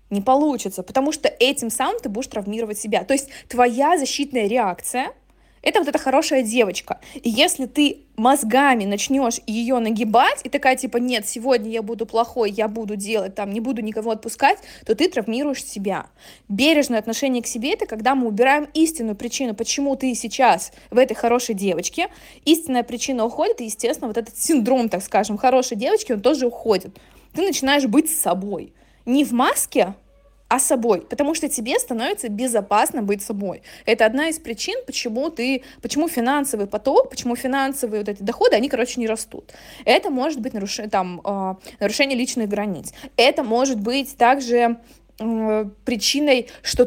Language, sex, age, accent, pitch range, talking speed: Russian, female, 20-39, native, 220-270 Hz, 160 wpm